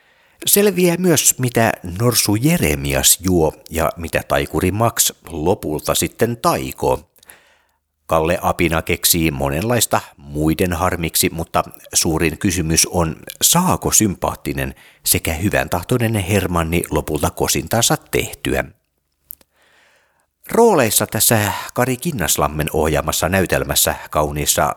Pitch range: 75-95 Hz